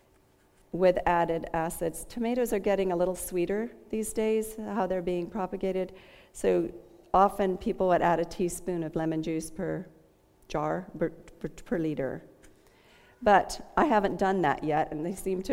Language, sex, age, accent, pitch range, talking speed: English, female, 50-69, American, 160-200 Hz, 160 wpm